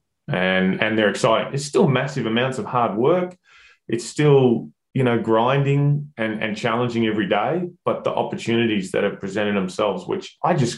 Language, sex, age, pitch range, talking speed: English, male, 20-39, 95-125 Hz, 175 wpm